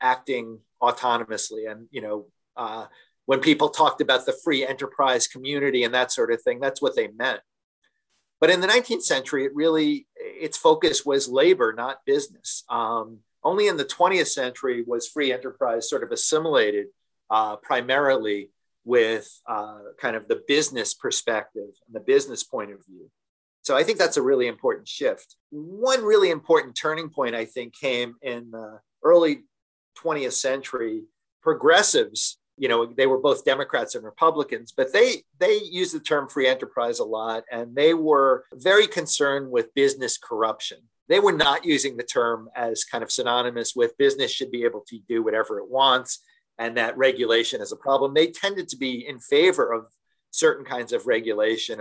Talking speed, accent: 170 wpm, American